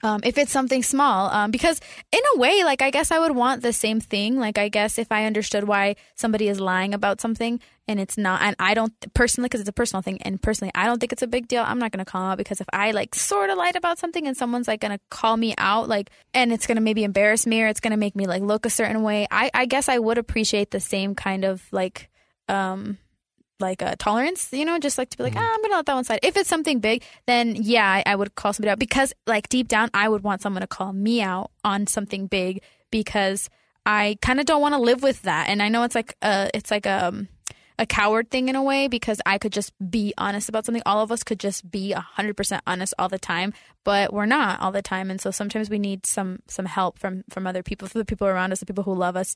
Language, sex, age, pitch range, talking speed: English, female, 10-29, 195-240 Hz, 270 wpm